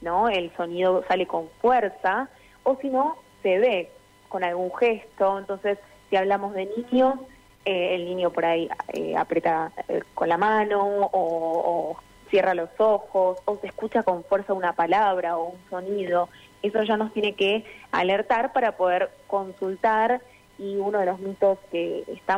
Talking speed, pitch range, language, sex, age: 165 wpm, 180-220 Hz, Spanish, female, 20-39